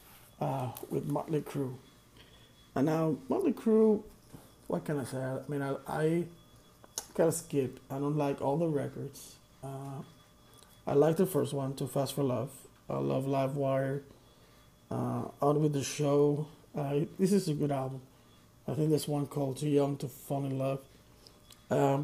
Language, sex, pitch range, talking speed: English, male, 135-150 Hz, 160 wpm